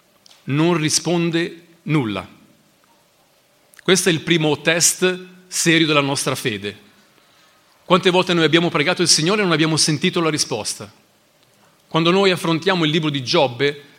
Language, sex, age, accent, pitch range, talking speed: Italian, male, 40-59, native, 155-190 Hz, 135 wpm